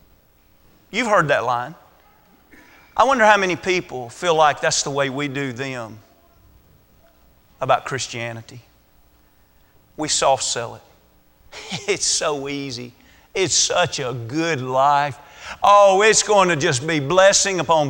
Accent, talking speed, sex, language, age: American, 130 wpm, male, English, 40-59